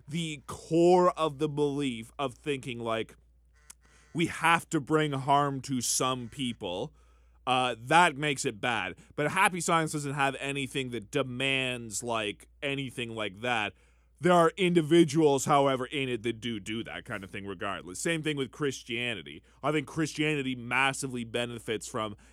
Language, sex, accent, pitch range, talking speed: English, male, American, 115-150 Hz, 155 wpm